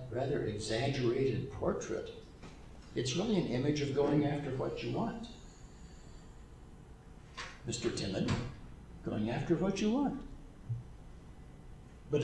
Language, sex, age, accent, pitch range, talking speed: English, male, 60-79, American, 110-150 Hz, 105 wpm